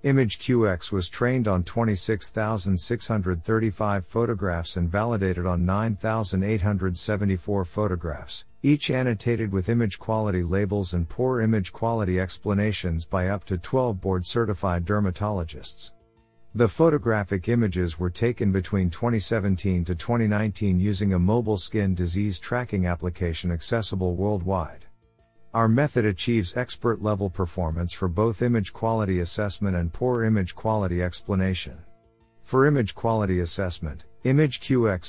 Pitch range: 90-115 Hz